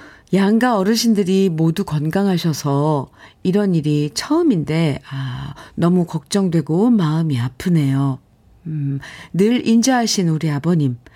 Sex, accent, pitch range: female, native, 150-195 Hz